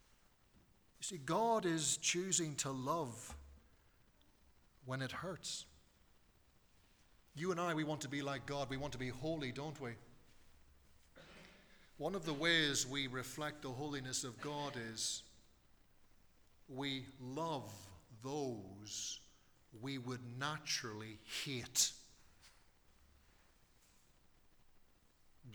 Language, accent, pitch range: English, British, 105-145 Hz